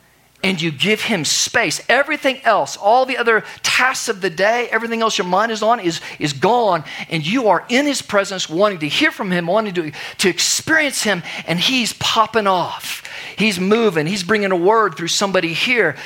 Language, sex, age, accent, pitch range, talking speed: English, male, 40-59, American, 155-220 Hz, 195 wpm